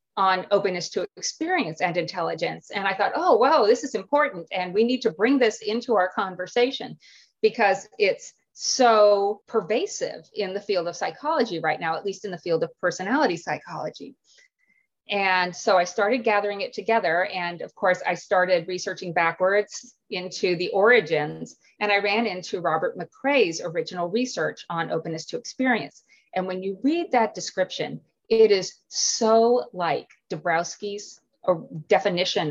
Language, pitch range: English, 185-255 Hz